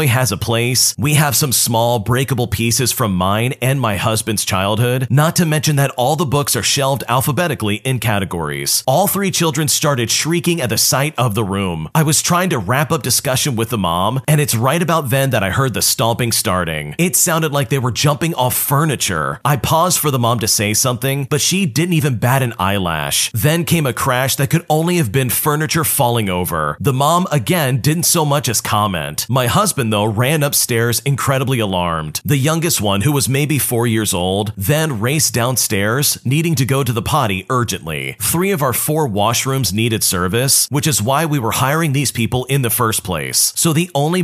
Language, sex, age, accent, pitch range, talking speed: English, male, 30-49, American, 110-150 Hz, 200 wpm